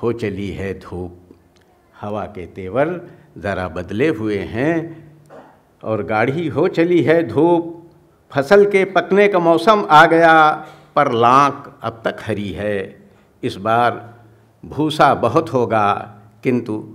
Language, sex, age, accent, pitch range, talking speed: Hindi, male, 60-79, native, 110-165 Hz, 125 wpm